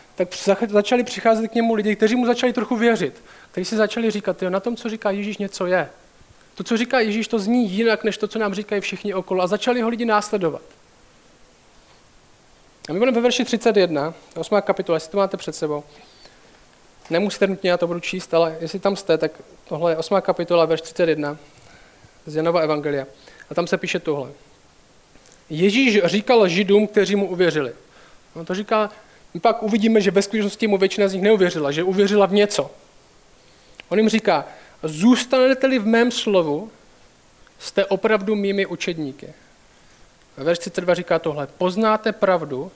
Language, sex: Czech, male